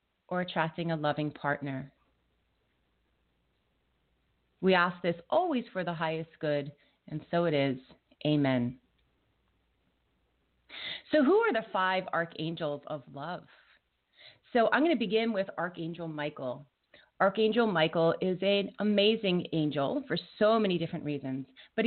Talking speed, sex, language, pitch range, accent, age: 125 wpm, female, English, 155-210 Hz, American, 30-49